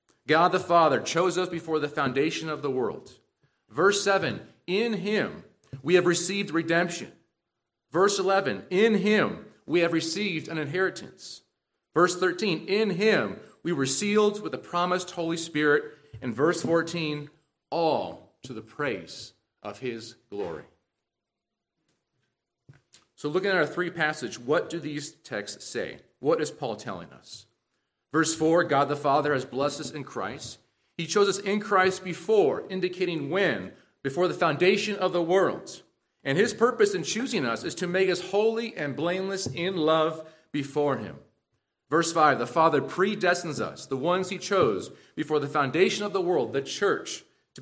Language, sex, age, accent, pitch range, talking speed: English, male, 40-59, American, 150-195 Hz, 160 wpm